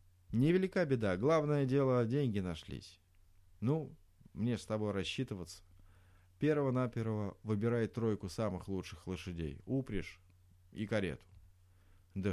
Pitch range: 90-120 Hz